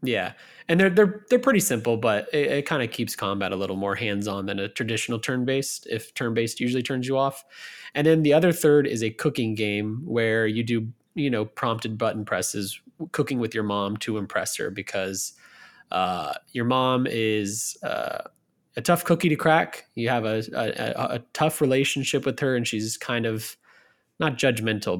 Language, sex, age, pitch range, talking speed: English, male, 20-39, 105-135 Hz, 195 wpm